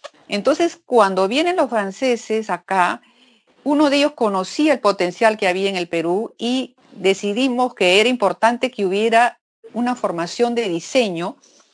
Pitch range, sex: 190-250 Hz, female